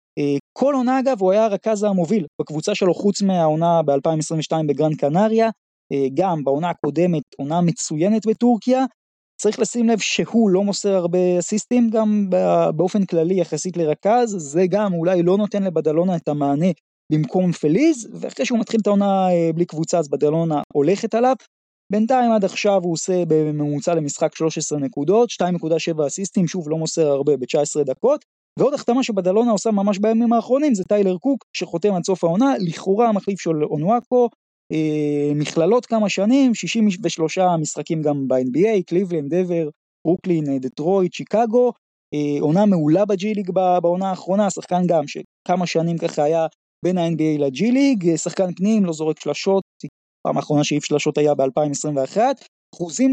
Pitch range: 155-215 Hz